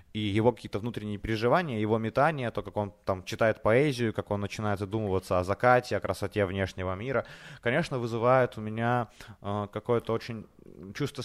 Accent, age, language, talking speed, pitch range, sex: native, 20-39, Ukrainian, 165 wpm, 100-120 Hz, male